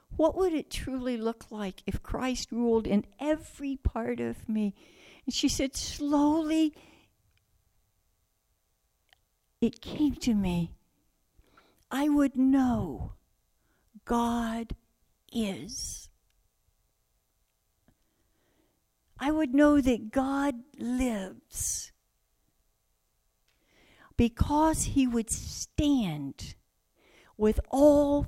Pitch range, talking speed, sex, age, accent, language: 185-275 Hz, 85 wpm, female, 60-79, American, English